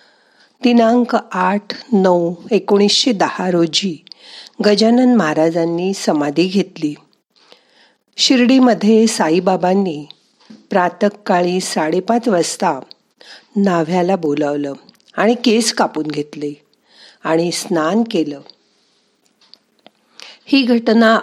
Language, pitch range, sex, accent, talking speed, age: Marathi, 170-225 Hz, female, native, 70 wpm, 50-69